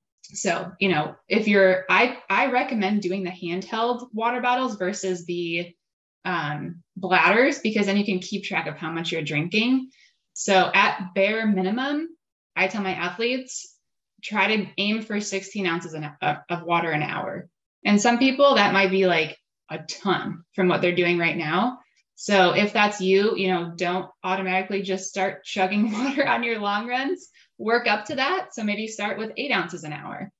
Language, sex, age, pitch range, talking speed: English, female, 20-39, 175-215 Hz, 175 wpm